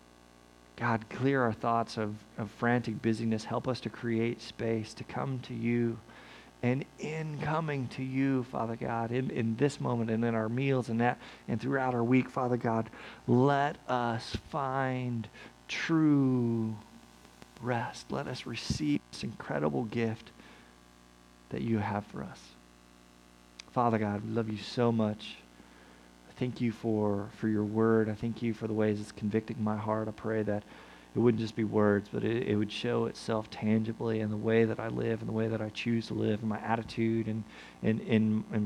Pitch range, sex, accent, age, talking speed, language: 100-120 Hz, male, American, 40-59, 180 wpm, English